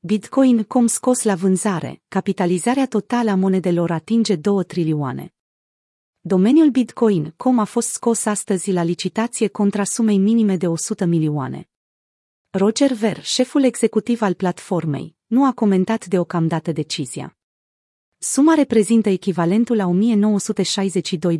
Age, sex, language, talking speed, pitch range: 30-49, female, Romanian, 120 wpm, 175-225 Hz